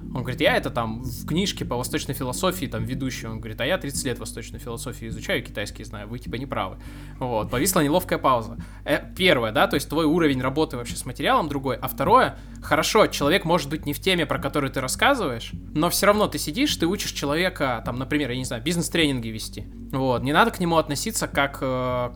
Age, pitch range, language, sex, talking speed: 20-39, 120-155 Hz, Russian, male, 215 wpm